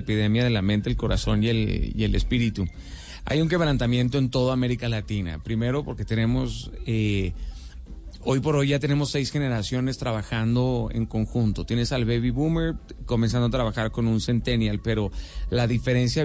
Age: 30-49